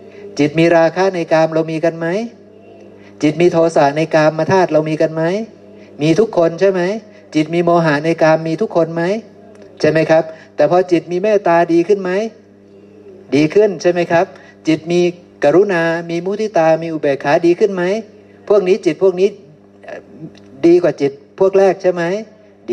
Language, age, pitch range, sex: Thai, 60-79, 120-190 Hz, male